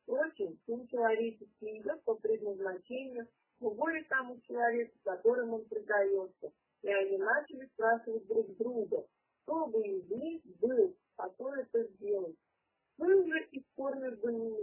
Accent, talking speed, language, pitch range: native, 125 wpm, Russian, 220-330 Hz